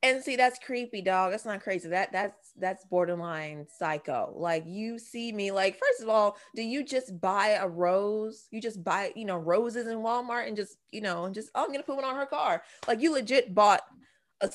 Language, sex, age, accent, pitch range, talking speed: English, female, 20-39, American, 190-270 Hz, 225 wpm